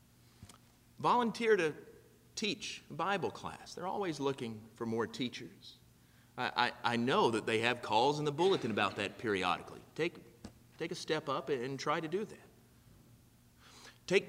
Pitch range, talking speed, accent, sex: 110-145 Hz, 145 wpm, American, male